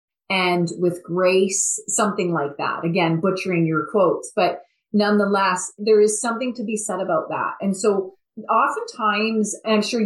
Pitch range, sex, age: 185-230 Hz, female, 30-49